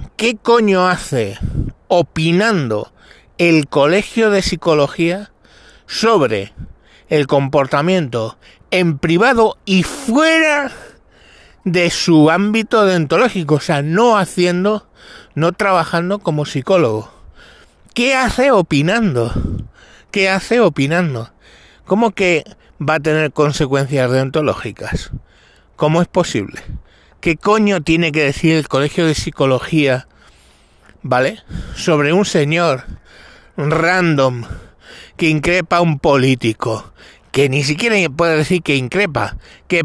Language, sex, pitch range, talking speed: Spanish, male, 135-185 Hz, 105 wpm